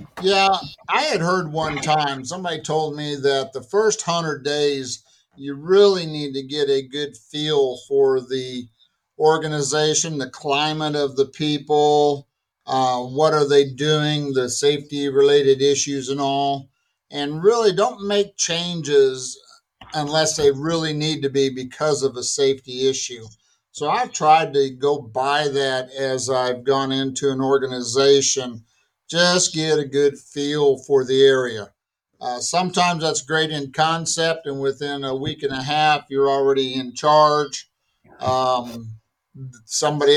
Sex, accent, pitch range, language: male, American, 135-155 Hz, English